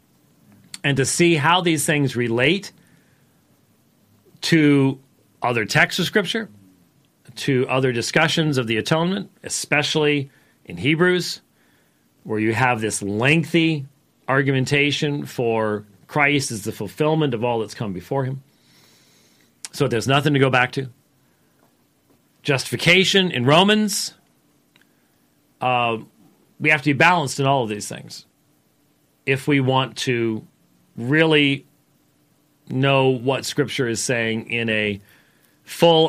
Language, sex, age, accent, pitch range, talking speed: English, male, 40-59, American, 120-155 Hz, 120 wpm